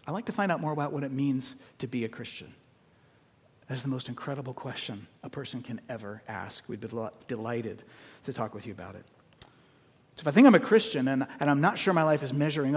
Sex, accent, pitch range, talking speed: male, American, 125-150 Hz, 230 wpm